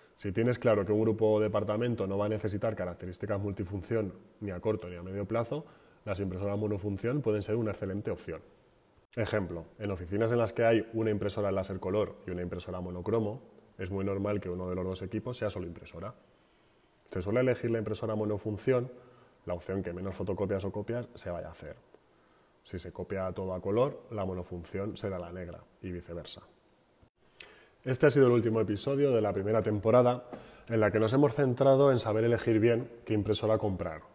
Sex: male